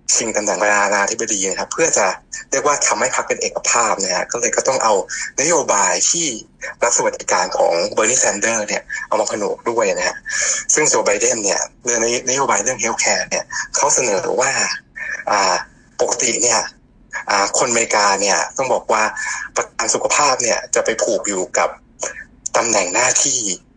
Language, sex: English, male